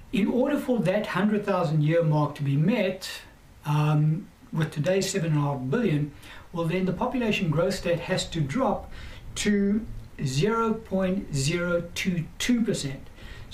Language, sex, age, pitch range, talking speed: English, male, 60-79, 145-190 Hz, 110 wpm